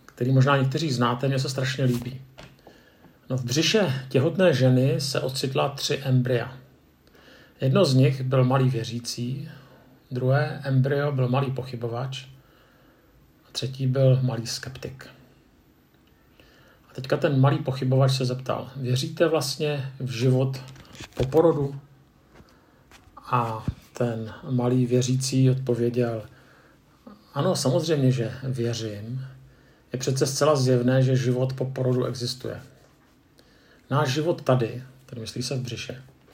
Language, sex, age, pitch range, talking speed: Czech, male, 50-69, 125-135 Hz, 115 wpm